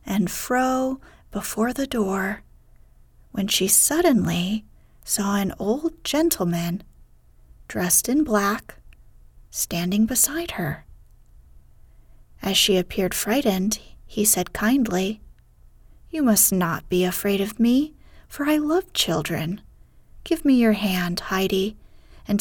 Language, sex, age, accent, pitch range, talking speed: English, female, 30-49, American, 195-240 Hz, 110 wpm